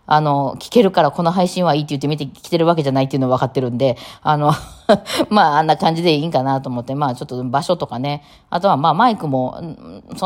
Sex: female